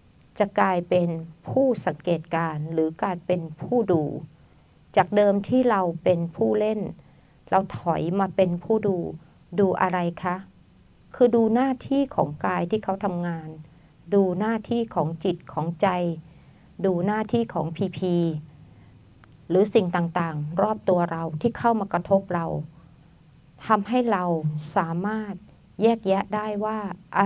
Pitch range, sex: 165-210 Hz, female